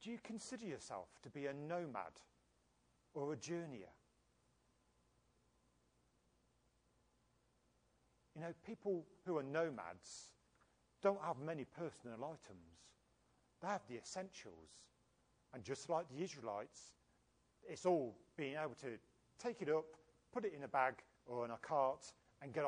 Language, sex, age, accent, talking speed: English, male, 40-59, British, 130 wpm